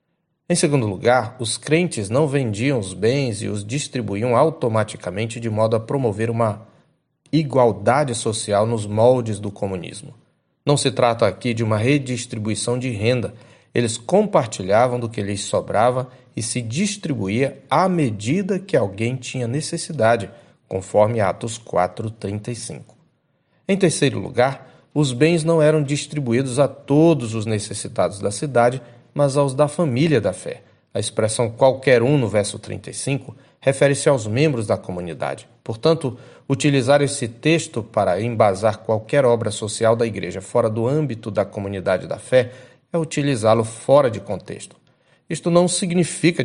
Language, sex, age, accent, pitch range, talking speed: Portuguese, male, 40-59, Brazilian, 110-145 Hz, 140 wpm